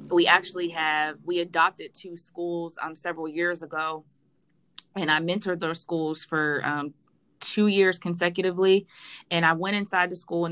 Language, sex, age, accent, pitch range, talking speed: English, female, 20-39, American, 155-180 Hz, 160 wpm